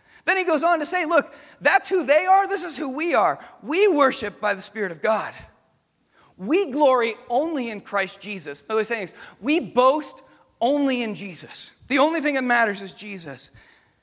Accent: American